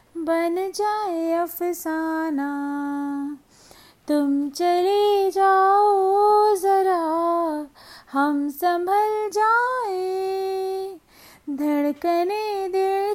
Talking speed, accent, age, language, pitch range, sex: 55 wpm, native, 20-39, Hindi, 330-415 Hz, female